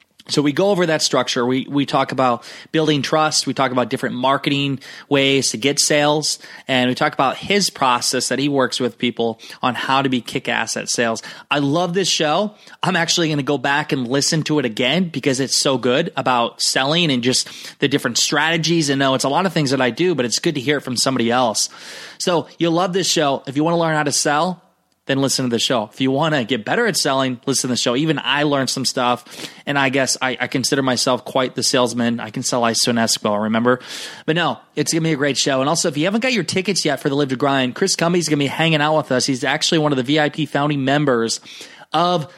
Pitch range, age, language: 125-155 Hz, 20-39, English